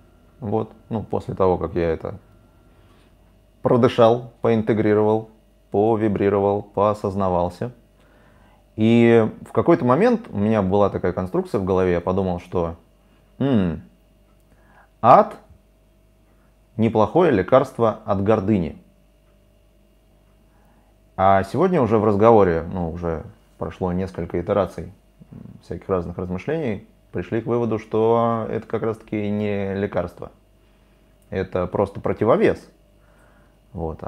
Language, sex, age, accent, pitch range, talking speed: Russian, male, 30-49, native, 90-110 Hz, 100 wpm